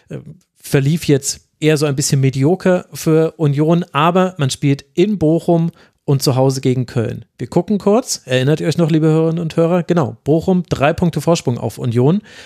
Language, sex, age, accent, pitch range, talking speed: German, male, 40-59, German, 130-160 Hz, 180 wpm